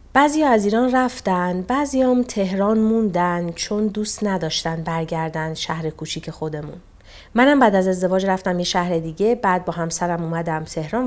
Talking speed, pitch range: 150 wpm, 170-220 Hz